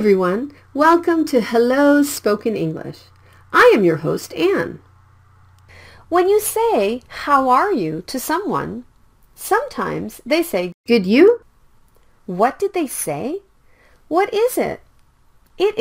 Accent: American